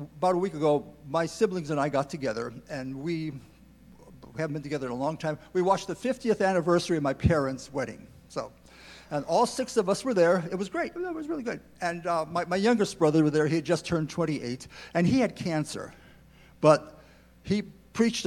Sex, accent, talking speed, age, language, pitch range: male, American, 205 wpm, 50-69, English, 155-205 Hz